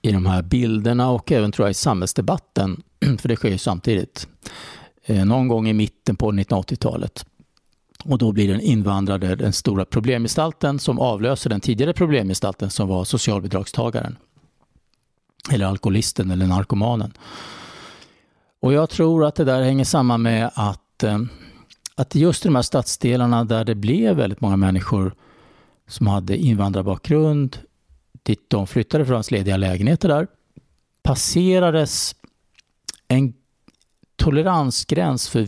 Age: 50-69